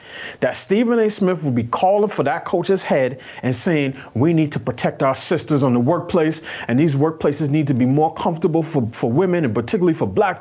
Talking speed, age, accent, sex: 215 wpm, 30-49, American, male